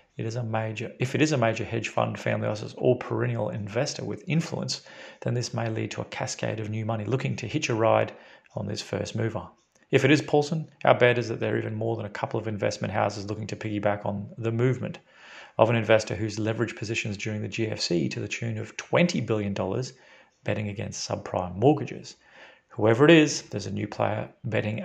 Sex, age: male, 40-59